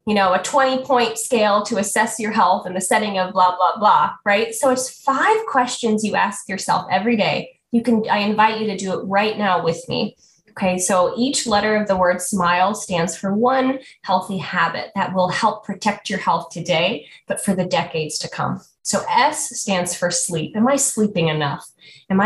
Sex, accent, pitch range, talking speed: female, American, 180-225 Hz, 200 wpm